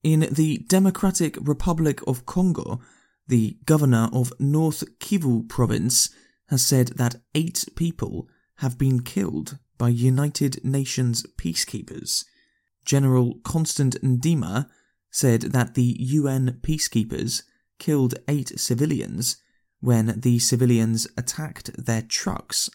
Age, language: 20-39, English